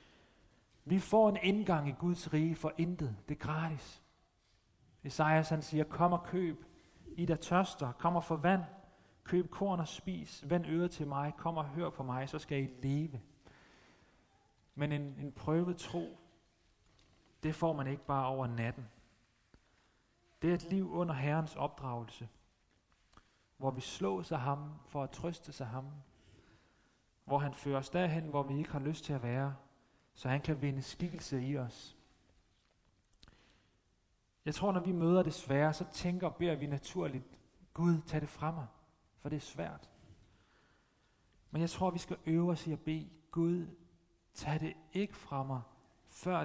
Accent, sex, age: native, male, 30-49